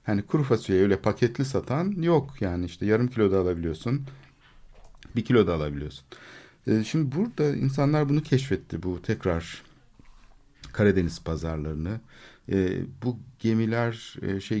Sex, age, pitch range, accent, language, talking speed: male, 50-69, 90-120 Hz, native, Turkish, 120 wpm